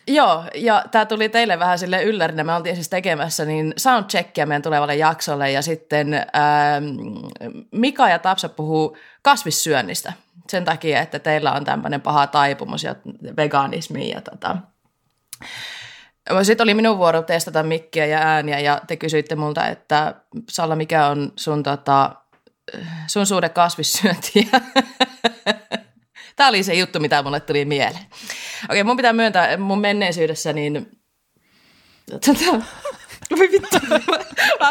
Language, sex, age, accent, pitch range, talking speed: Finnish, female, 20-39, native, 155-230 Hz, 130 wpm